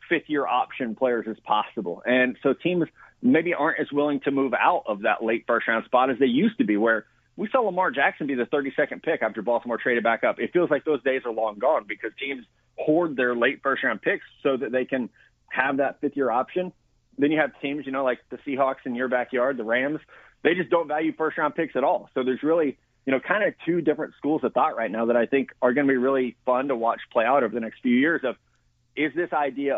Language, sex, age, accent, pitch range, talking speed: English, male, 30-49, American, 120-150 Hz, 250 wpm